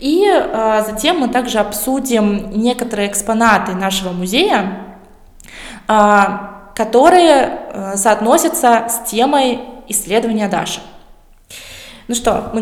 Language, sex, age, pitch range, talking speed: Russian, female, 20-39, 205-250 Hz, 85 wpm